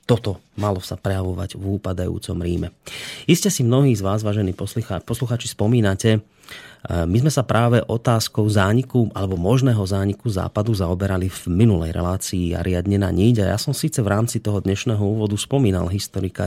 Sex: male